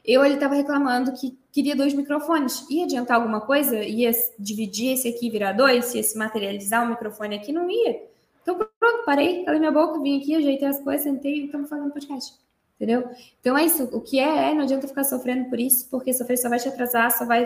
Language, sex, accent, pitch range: Portuguese, female, Brazilian, 235-280 Hz